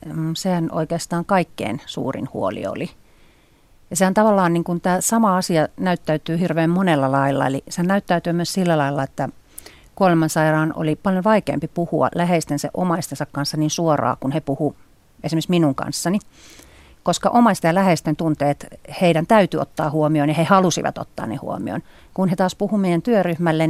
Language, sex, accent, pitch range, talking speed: Finnish, female, native, 150-185 Hz, 155 wpm